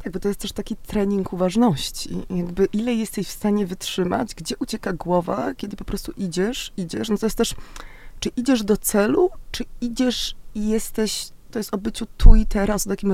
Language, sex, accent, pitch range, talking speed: Polish, female, native, 180-235 Hz, 190 wpm